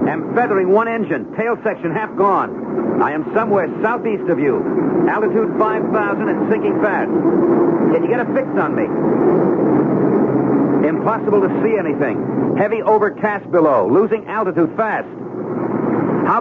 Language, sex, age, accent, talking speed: English, male, 60-79, American, 135 wpm